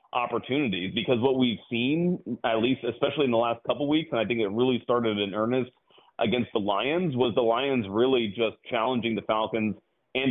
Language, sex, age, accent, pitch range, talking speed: English, male, 30-49, American, 115-140 Hz, 200 wpm